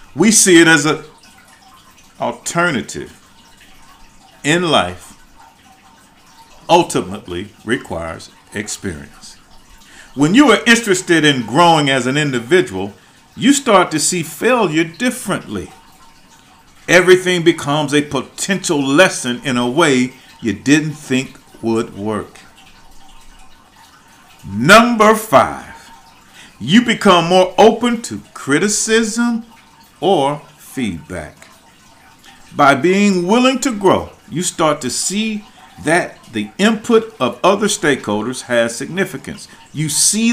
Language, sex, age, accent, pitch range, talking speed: English, male, 50-69, American, 130-205 Hz, 100 wpm